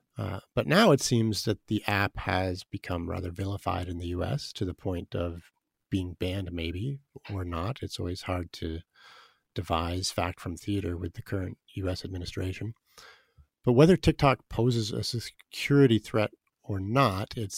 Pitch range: 95-115 Hz